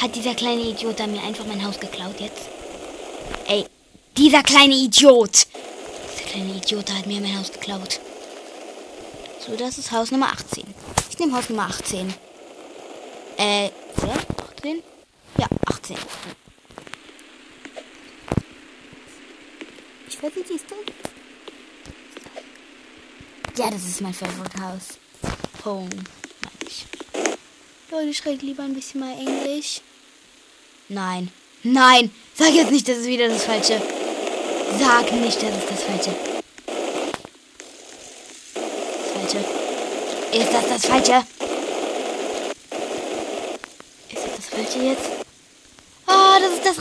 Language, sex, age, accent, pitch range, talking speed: German, female, 20-39, German, 215-315 Hz, 115 wpm